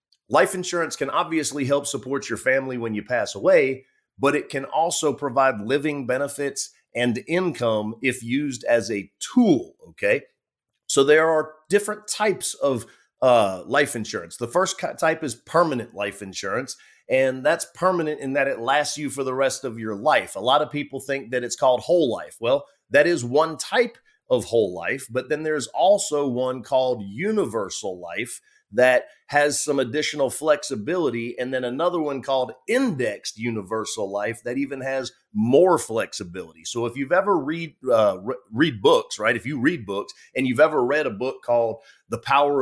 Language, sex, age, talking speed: English, male, 30-49, 175 wpm